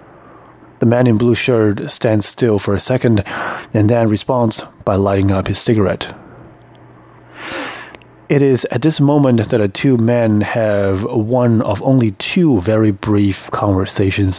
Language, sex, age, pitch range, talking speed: English, male, 30-49, 100-125 Hz, 145 wpm